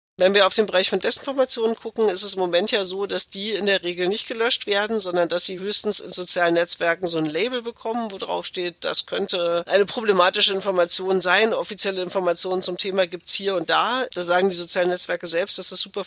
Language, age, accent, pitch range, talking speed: German, 50-69, German, 175-205 Hz, 225 wpm